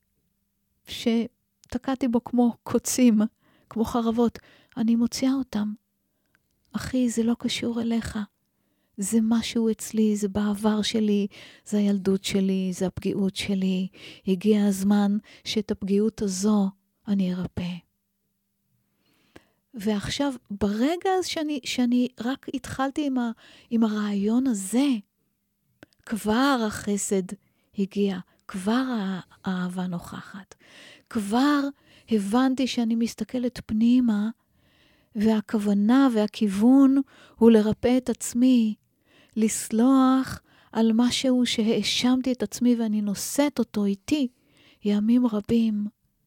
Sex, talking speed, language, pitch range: female, 95 wpm, English, 205-245 Hz